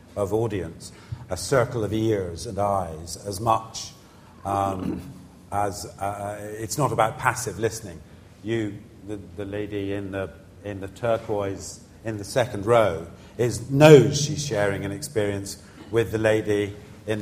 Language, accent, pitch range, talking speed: English, British, 100-135 Hz, 145 wpm